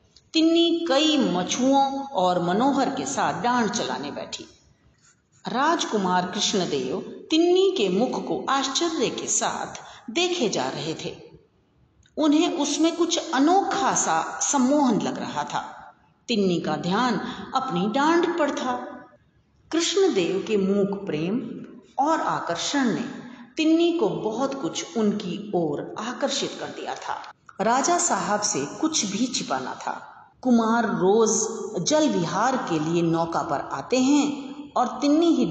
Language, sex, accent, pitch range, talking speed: Hindi, female, native, 195-300 Hz, 125 wpm